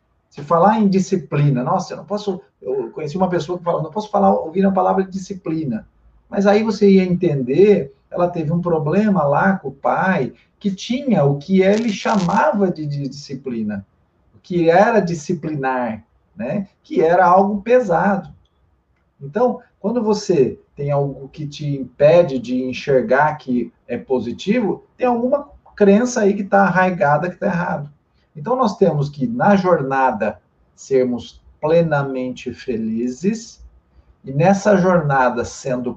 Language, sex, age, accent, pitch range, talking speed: Portuguese, male, 40-59, Brazilian, 135-200 Hz, 145 wpm